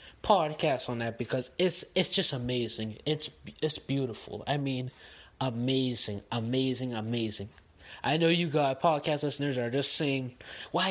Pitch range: 125-170 Hz